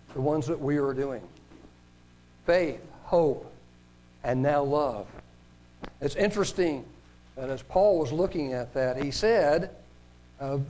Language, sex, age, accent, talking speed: English, male, 60-79, American, 130 wpm